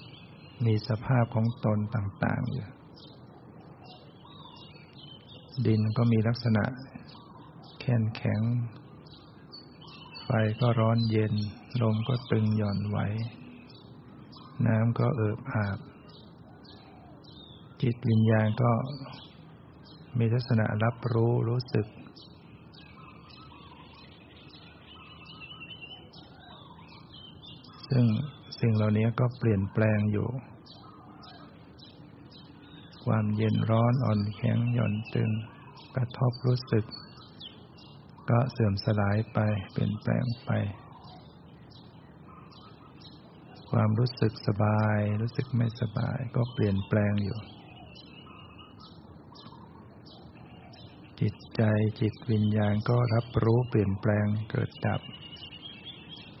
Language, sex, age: English, male, 60-79